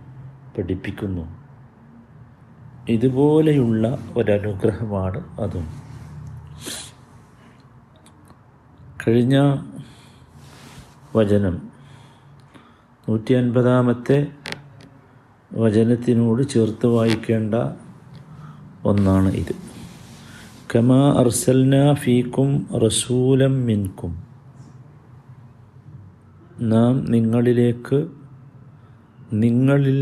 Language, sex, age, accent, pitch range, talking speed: Malayalam, male, 50-69, native, 115-135 Hz, 40 wpm